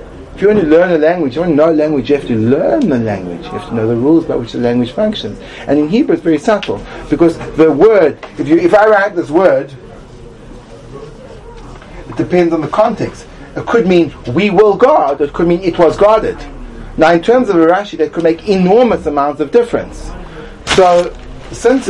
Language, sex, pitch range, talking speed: English, male, 130-170 Hz, 210 wpm